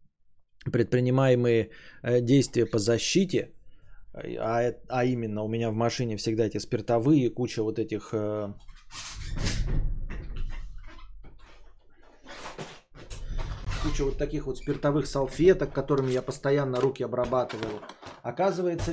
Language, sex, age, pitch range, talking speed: Bulgarian, male, 20-39, 115-140 Hz, 90 wpm